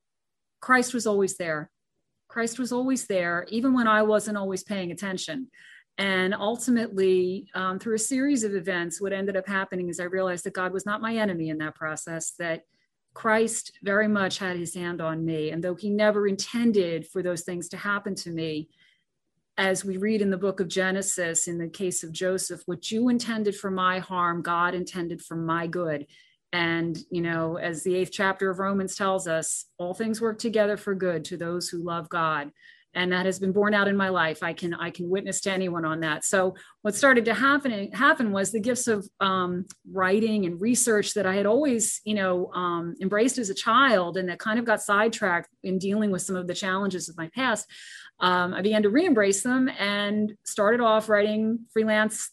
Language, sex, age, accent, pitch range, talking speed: English, female, 40-59, American, 175-215 Hz, 200 wpm